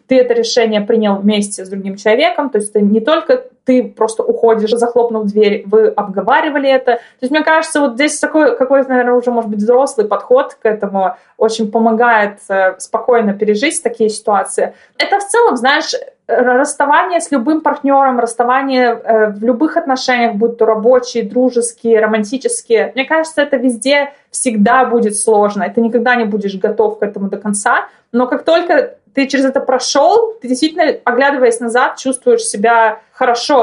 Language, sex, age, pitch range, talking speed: Russian, female, 20-39, 220-270 Hz, 165 wpm